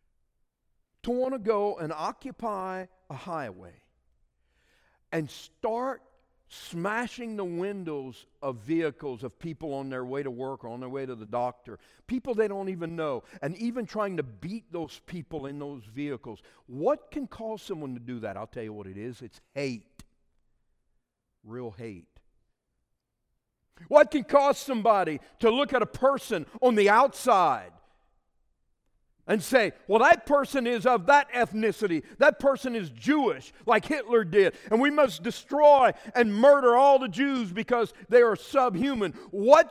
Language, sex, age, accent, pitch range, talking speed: English, male, 50-69, American, 160-265 Hz, 155 wpm